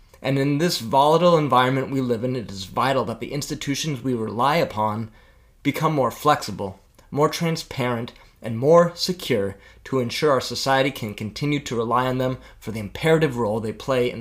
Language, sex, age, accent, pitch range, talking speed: English, male, 20-39, American, 110-150 Hz, 175 wpm